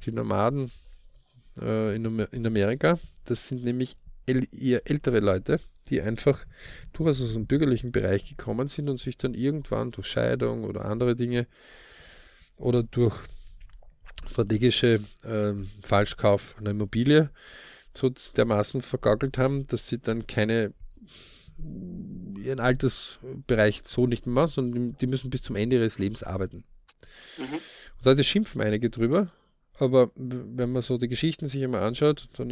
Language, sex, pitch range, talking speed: German, male, 105-130 Hz, 140 wpm